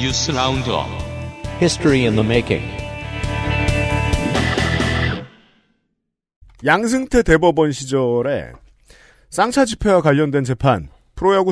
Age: 40-59